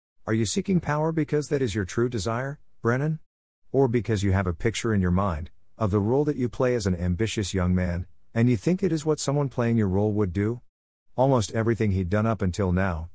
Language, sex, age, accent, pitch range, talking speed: English, male, 50-69, American, 90-125 Hz, 230 wpm